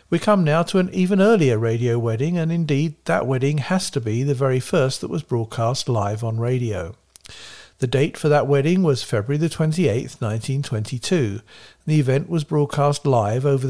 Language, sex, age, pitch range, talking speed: English, male, 50-69, 115-150 Hz, 180 wpm